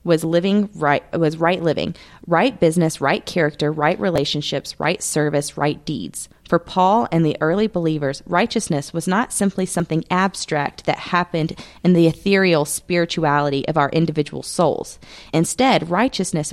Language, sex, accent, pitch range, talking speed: English, female, American, 150-175 Hz, 145 wpm